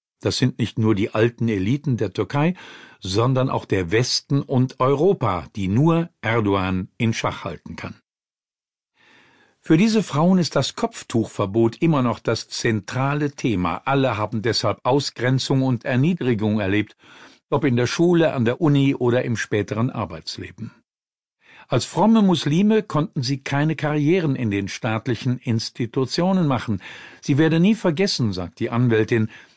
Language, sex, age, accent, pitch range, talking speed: German, male, 50-69, German, 115-150 Hz, 140 wpm